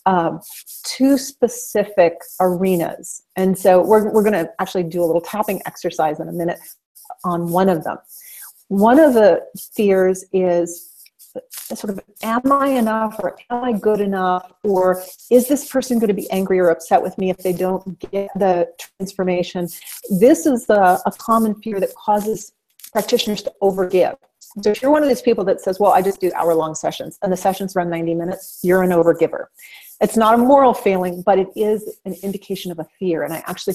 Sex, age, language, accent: female, 40-59, English, American